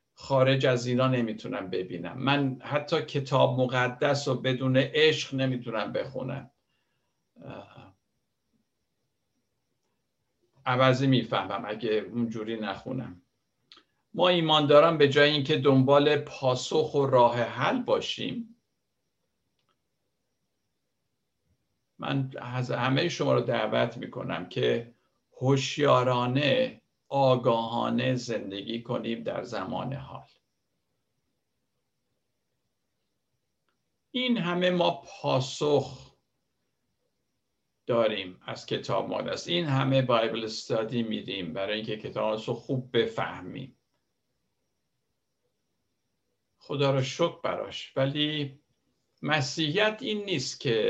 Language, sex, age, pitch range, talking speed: Persian, male, 50-69, 120-150 Hz, 85 wpm